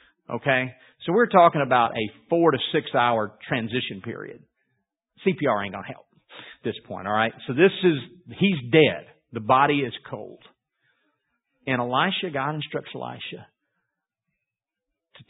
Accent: American